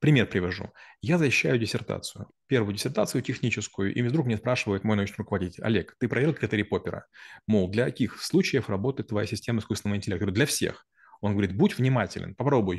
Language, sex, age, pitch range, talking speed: Russian, male, 30-49, 110-140 Hz, 175 wpm